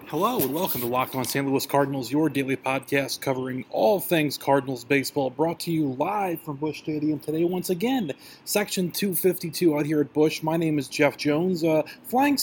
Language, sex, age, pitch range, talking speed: English, male, 30-49, 135-165 Hz, 195 wpm